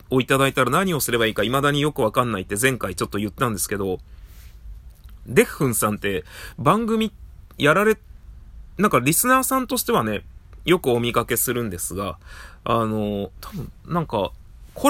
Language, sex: Japanese, male